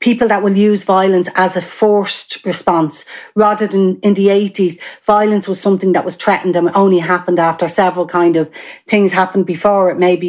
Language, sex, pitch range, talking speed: English, female, 180-210 Hz, 185 wpm